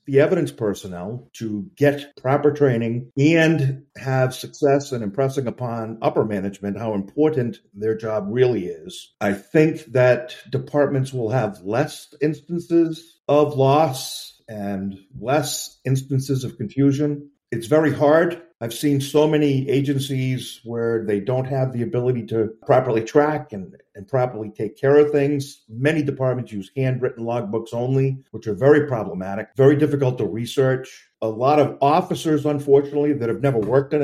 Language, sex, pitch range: English, male, 115-145 Hz